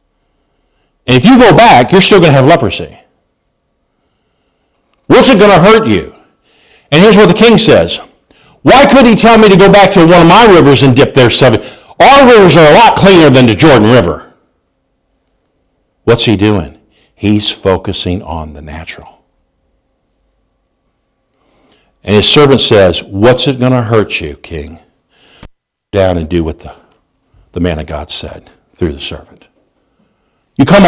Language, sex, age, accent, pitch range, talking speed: English, male, 50-69, American, 95-150 Hz, 165 wpm